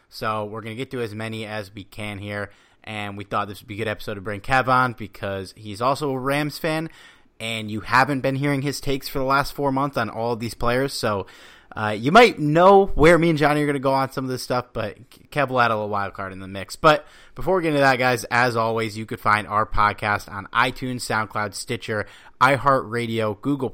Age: 30-49